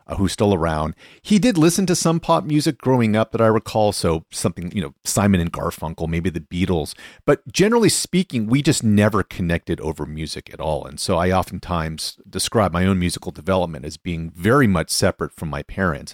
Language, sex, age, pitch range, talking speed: English, male, 40-59, 80-110 Hz, 195 wpm